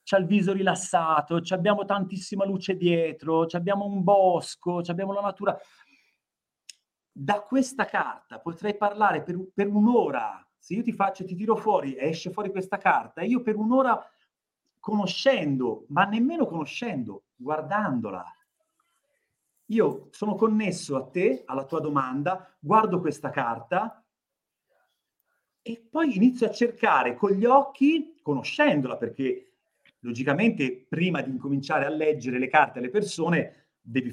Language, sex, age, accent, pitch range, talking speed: Italian, male, 40-59, native, 165-240 Hz, 130 wpm